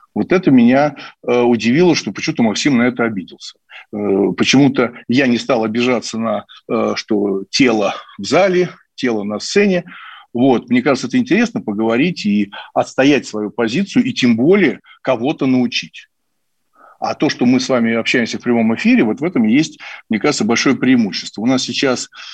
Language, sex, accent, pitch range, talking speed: Russian, male, native, 115-180 Hz, 155 wpm